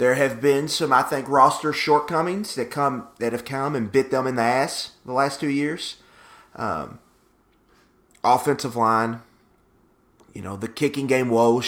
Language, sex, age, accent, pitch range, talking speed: English, male, 30-49, American, 110-130 Hz, 165 wpm